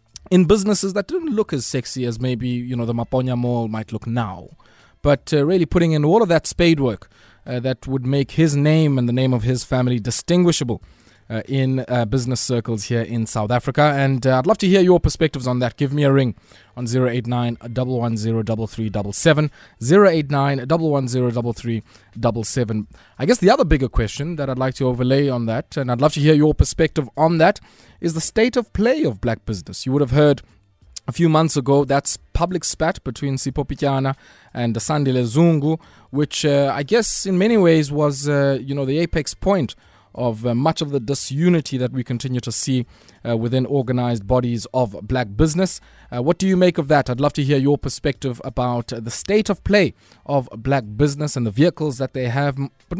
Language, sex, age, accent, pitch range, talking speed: English, male, 20-39, South African, 120-155 Hz, 195 wpm